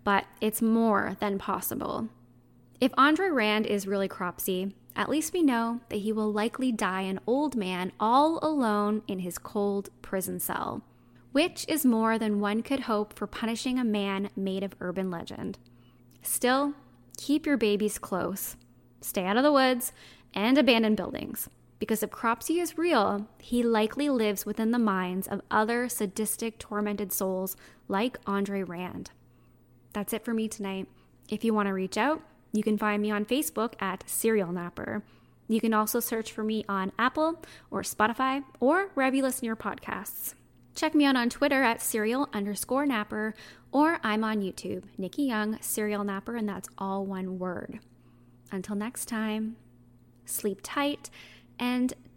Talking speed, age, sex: 160 wpm, 10-29, female